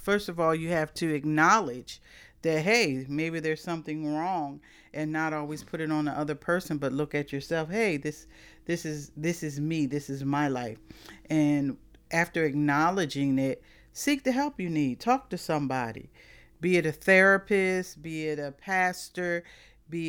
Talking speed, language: 175 wpm, English